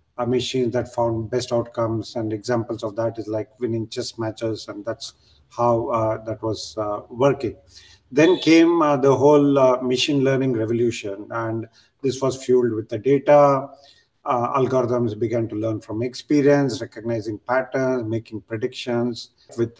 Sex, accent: male, Indian